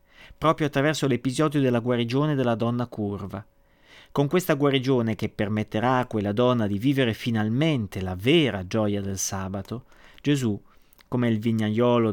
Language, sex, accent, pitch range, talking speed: Italian, male, native, 105-130 Hz, 140 wpm